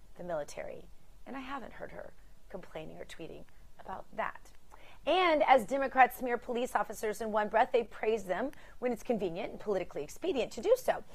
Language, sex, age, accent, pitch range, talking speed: English, female, 30-49, American, 180-270 Hz, 180 wpm